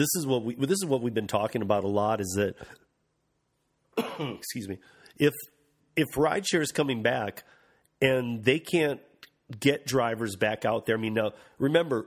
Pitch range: 110-135 Hz